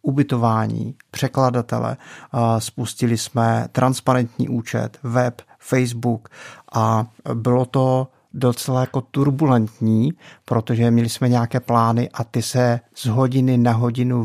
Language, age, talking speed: Czech, 50-69, 110 wpm